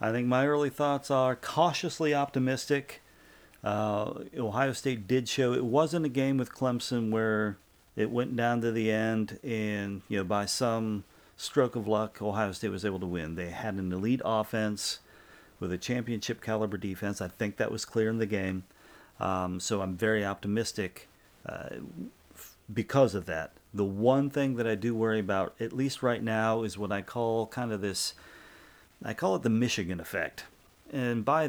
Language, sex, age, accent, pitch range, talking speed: English, male, 40-59, American, 100-125 Hz, 180 wpm